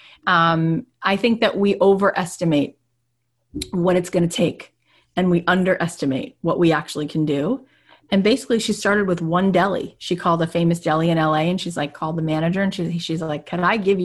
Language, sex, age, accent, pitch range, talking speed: English, female, 30-49, American, 160-210 Hz, 190 wpm